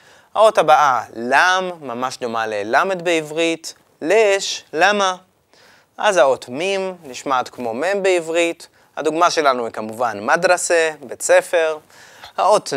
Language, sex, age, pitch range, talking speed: Hebrew, male, 20-39, 145-190 Hz, 115 wpm